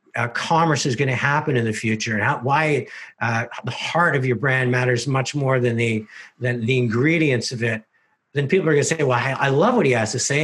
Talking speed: 245 wpm